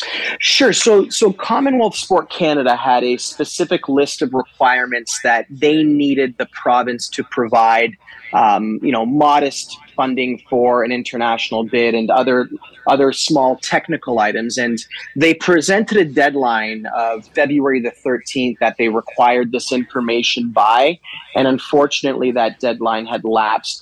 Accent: American